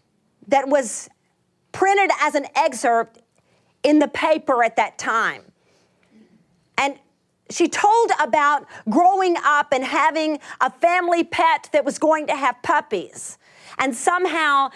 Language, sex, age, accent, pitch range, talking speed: English, female, 40-59, American, 230-320 Hz, 125 wpm